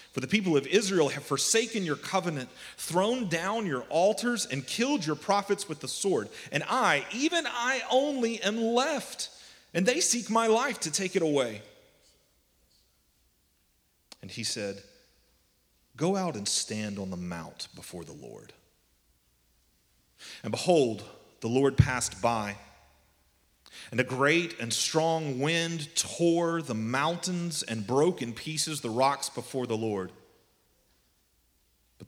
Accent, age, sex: American, 30-49, male